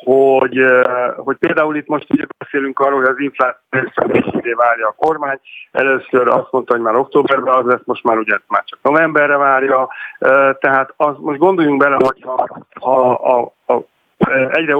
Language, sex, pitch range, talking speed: Hungarian, male, 125-150 Hz, 160 wpm